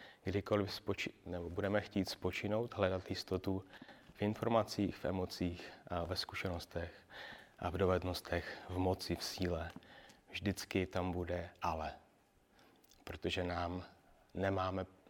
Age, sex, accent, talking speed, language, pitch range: 30-49, male, native, 115 wpm, Czech, 85-100 Hz